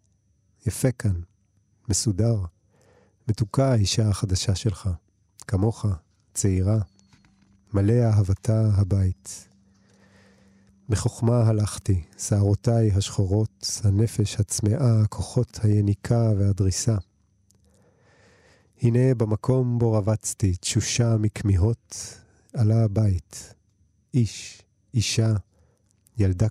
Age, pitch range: 40-59, 95-115 Hz